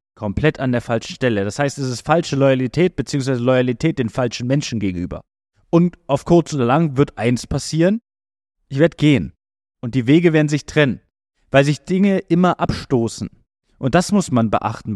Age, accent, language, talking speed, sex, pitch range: 30-49, German, German, 175 wpm, male, 120-165 Hz